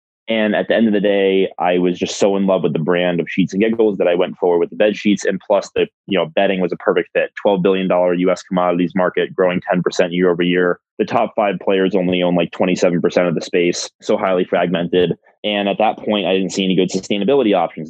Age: 20-39